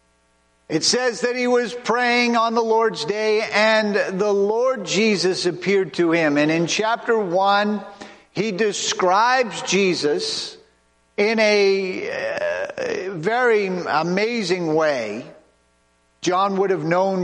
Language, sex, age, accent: English, male, 50-69, American